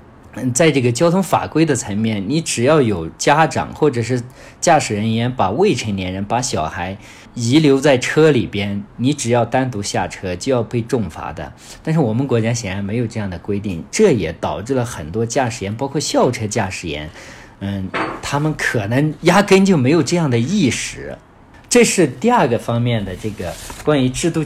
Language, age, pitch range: Chinese, 50-69, 100-135 Hz